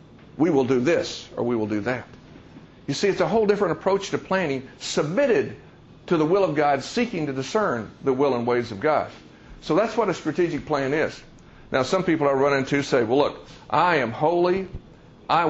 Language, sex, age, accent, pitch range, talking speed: English, male, 60-79, American, 135-180 Hz, 205 wpm